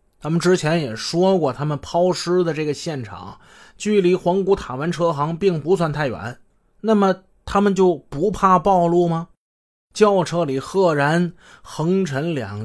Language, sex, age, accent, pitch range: Chinese, male, 20-39, native, 135-185 Hz